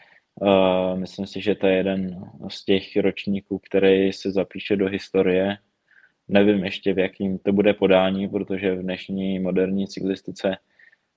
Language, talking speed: Czech, 140 wpm